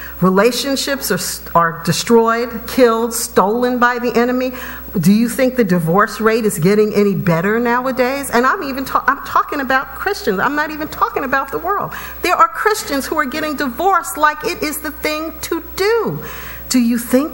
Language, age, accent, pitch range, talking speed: English, 50-69, American, 165-275 Hz, 180 wpm